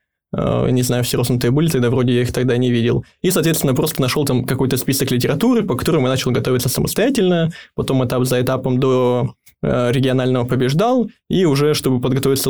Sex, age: male, 20-39